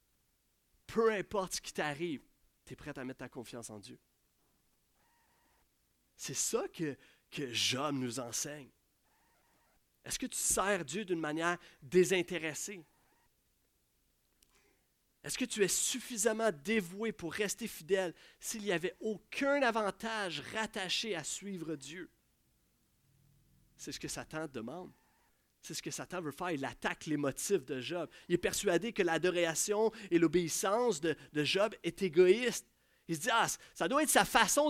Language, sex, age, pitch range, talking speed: French, male, 30-49, 145-220 Hz, 145 wpm